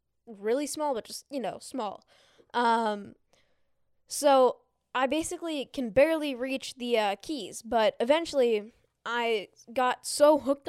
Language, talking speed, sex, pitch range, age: English, 130 wpm, female, 225-285 Hz, 10-29